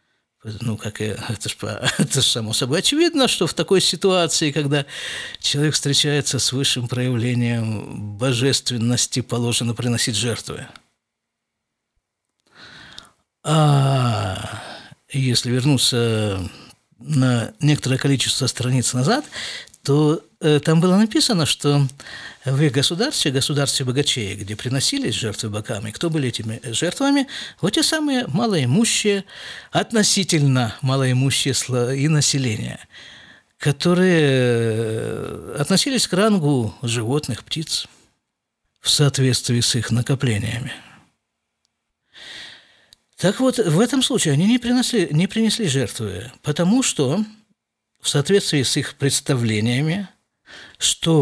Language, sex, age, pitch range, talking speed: Russian, male, 50-69, 120-165 Hz, 100 wpm